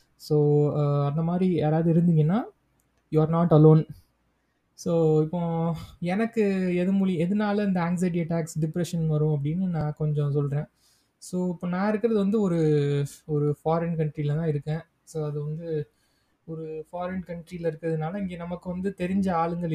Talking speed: 135 wpm